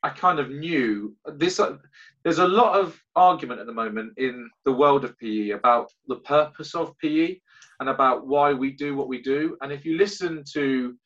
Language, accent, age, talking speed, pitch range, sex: English, British, 30-49, 200 wpm, 125-160 Hz, male